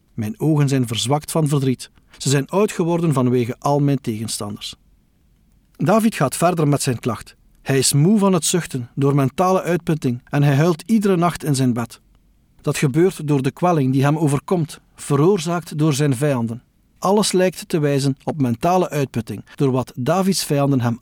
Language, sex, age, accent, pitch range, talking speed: Dutch, male, 50-69, Dutch, 125-180 Hz, 175 wpm